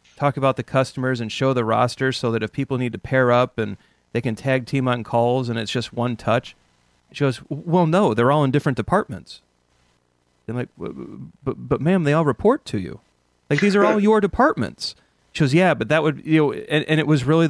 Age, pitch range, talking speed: 30-49, 120-165 Hz, 235 wpm